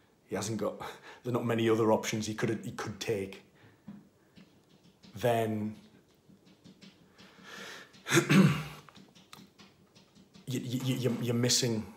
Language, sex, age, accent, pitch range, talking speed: English, male, 30-49, British, 100-120 Hz, 100 wpm